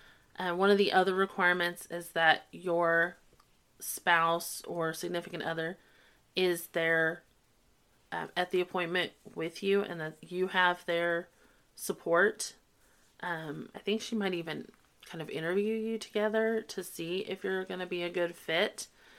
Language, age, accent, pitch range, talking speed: English, 30-49, American, 175-215 Hz, 155 wpm